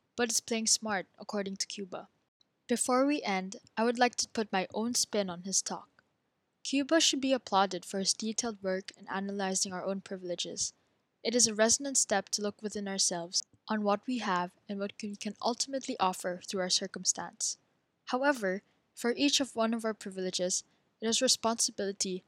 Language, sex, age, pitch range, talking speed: English, female, 10-29, 195-230 Hz, 180 wpm